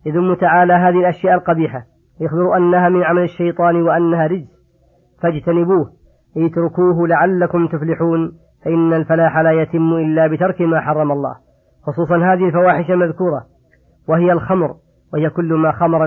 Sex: female